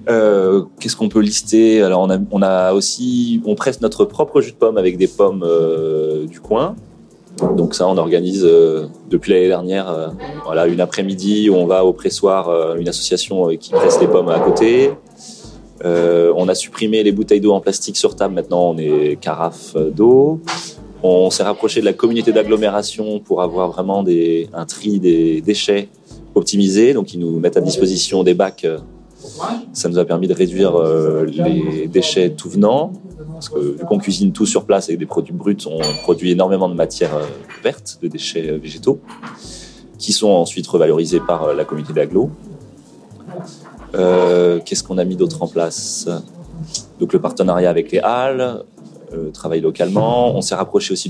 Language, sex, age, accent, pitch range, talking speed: French, male, 30-49, French, 85-110 Hz, 180 wpm